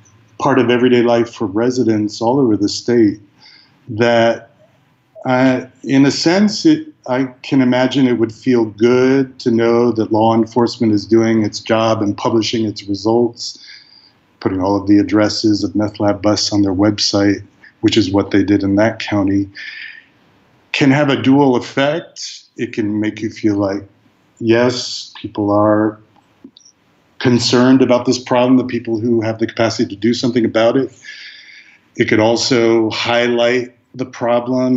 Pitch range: 105-125 Hz